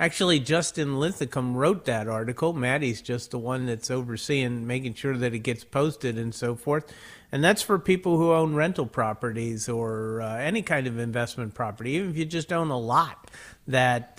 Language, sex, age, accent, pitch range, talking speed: English, male, 50-69, American, 120-145 Hz, 185 wpm